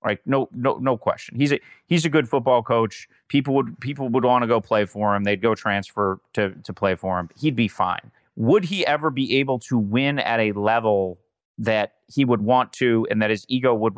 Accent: American